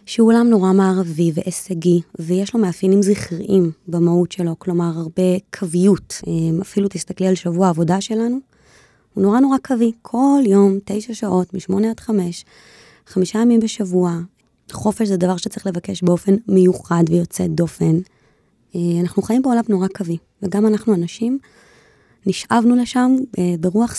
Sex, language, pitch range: female, Hebrew, 180-210 Hz